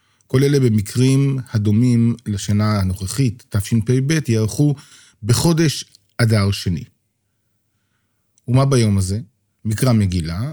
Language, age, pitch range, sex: Hebrew, 50-69, 105-130 Hz, male